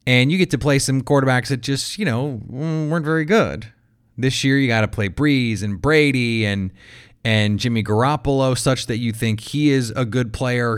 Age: 30-49